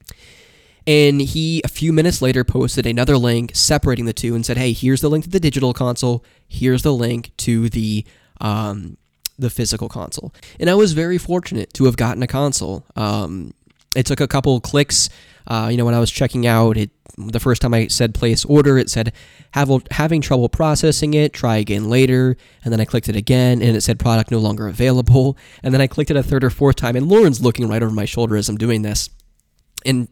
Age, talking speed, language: 20-39, 215 wpm, English